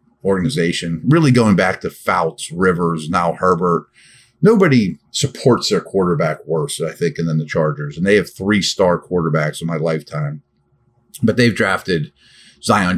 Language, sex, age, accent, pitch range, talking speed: English, male, 50-69, American, 85-130 Hz, 155 wpm